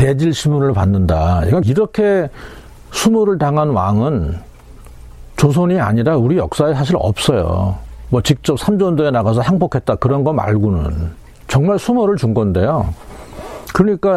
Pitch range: 100-155 Hz